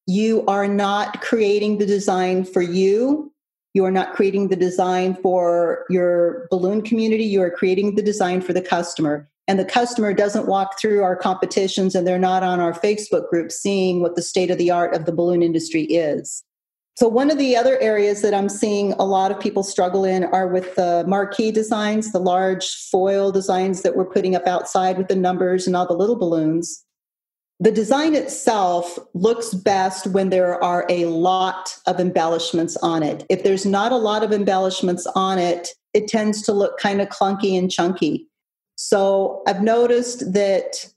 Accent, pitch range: American, 185-210 Hz